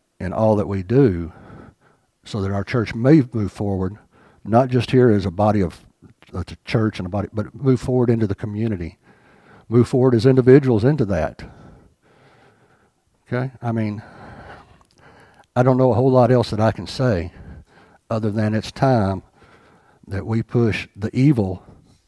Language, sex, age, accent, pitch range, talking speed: English, male, 60-79, American, 100-125 Hz, 160 wpm